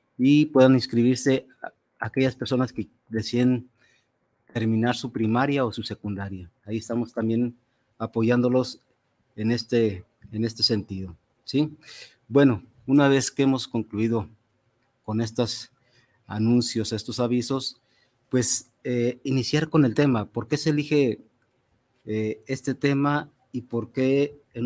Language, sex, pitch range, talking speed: Spanish, male, 115-130 Hz, 125 wpm